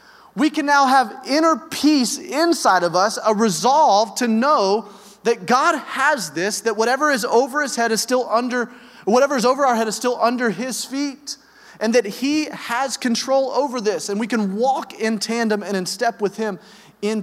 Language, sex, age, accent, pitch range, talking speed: English, male, 30-49, American, 165-245 Hz, 190 wpm